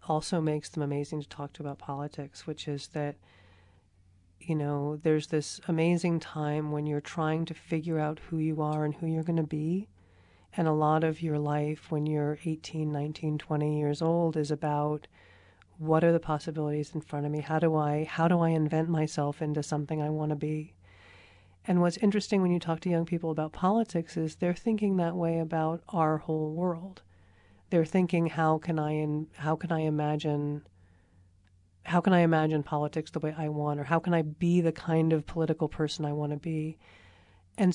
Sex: female